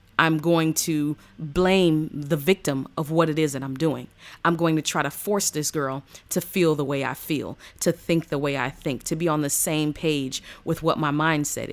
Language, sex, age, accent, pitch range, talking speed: English, female, 30-49, American, 145-185 Hz, 220 wpm